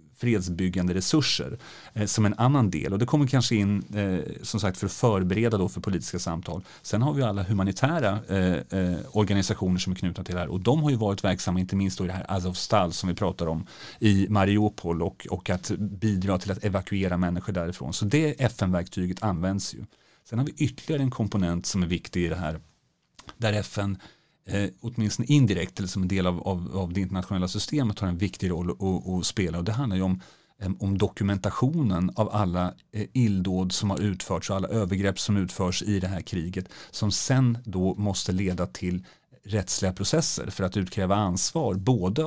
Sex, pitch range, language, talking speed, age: male, 90-110 Hz, Swedish, 190 wpm, 40-59